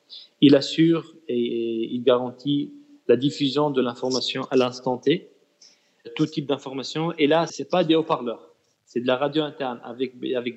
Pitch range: 120-145 Hz